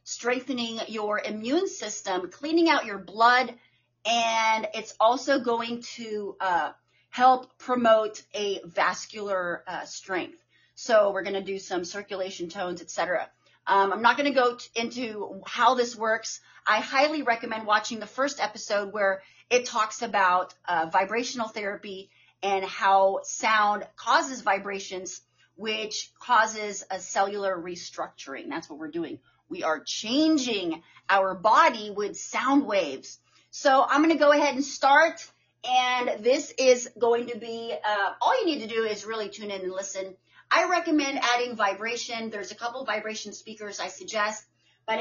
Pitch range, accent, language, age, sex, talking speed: 195-255 Hz, American, English, 30-49, female, 150 wpm